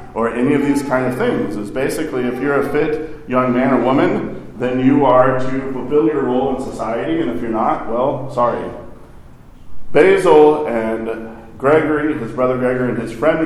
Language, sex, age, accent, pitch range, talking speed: English, male, 40-59, American, 115-145 Hz, 185 wpm